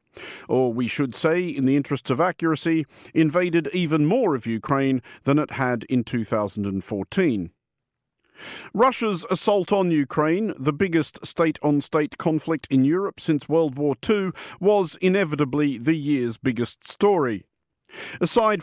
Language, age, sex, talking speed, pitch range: English, 50-69, male, 130 wpm, 140-180 Hz